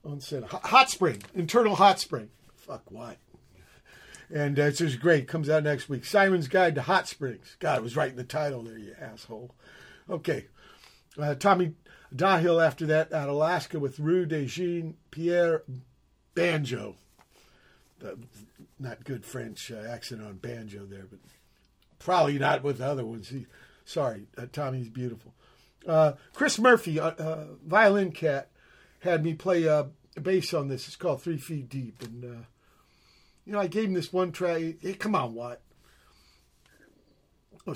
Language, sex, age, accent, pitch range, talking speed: English, male, 50-69, American, 130-175 Hz, 165 wpm